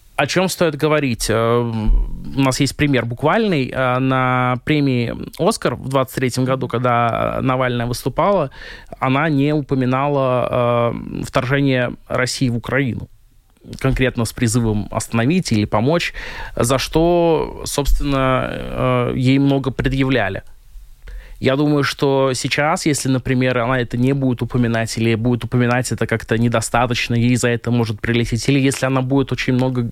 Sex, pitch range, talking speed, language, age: male, 120-140 Hz, 130 wpm, Russian, 20-39